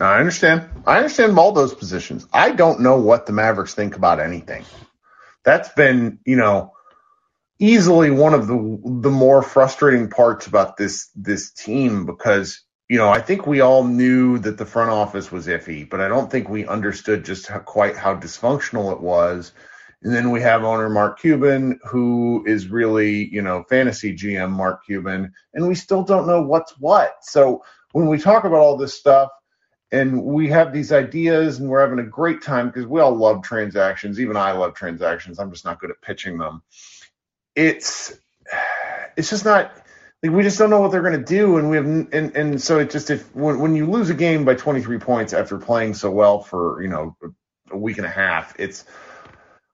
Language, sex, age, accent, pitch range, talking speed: English, male, 30-49, American, 105-155 Hz, 195 wpm